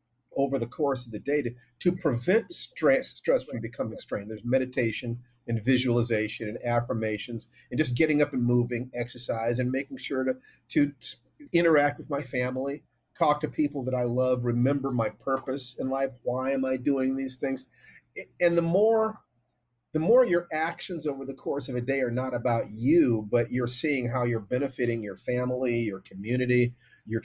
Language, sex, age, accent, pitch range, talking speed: English, male, 50-69, American, 120-150 Hz, 180 wpm